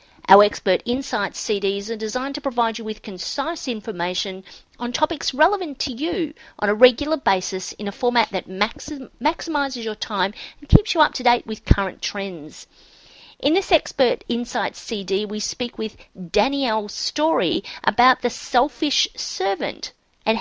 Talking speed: 155 wpm